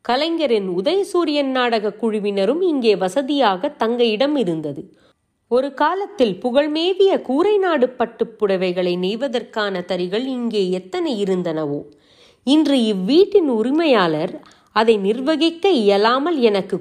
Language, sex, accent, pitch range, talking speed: Tamil, female, native, 195-285 Hz, 95 wpm